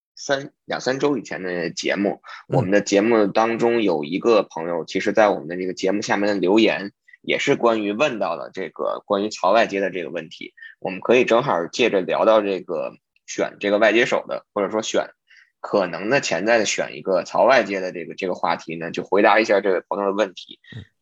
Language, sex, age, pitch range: Chinese, male, 20-39, 100-120 Hz